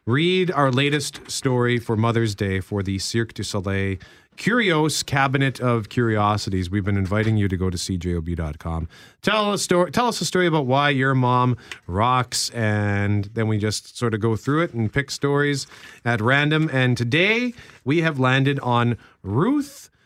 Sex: male